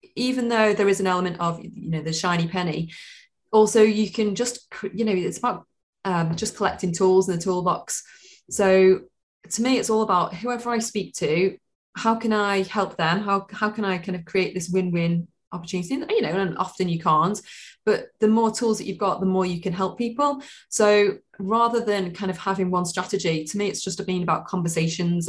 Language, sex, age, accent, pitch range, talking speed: English, female, 20-39, British, 175-210 Hz, 205 wpm